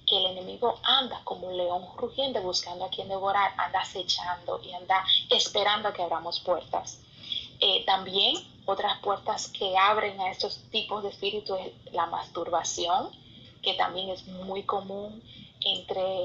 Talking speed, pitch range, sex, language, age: 150 wpm, 185-220 Hz, female, Spanish, 30-49